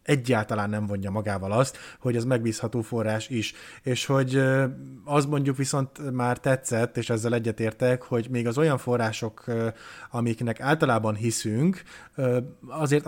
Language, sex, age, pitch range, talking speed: Hungarian, male, 30-49, 110-135 Hz, 135 wpm